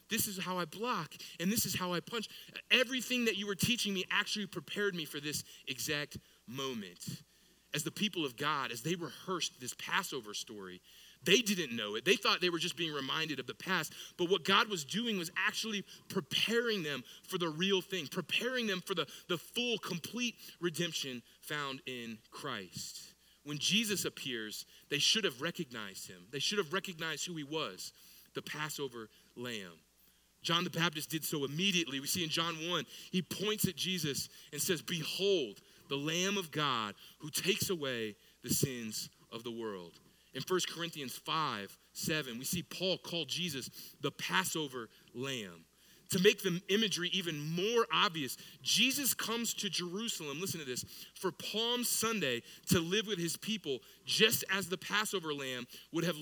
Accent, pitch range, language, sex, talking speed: American, 145-195 Hz, English, male, 175 wpm